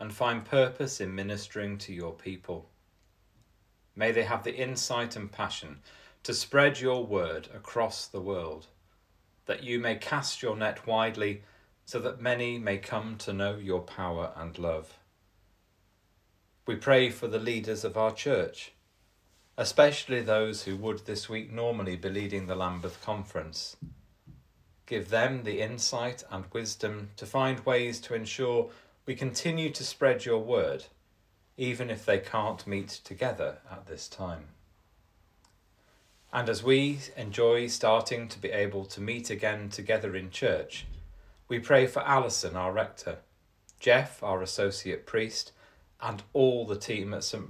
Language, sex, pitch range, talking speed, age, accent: English, male, 95-120 Hz, 145 wpm, 40-59, British